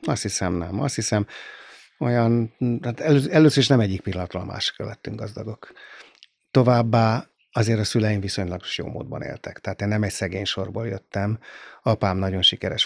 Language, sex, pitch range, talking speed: Hungarian, male, 95-110 Hz, 155 wpm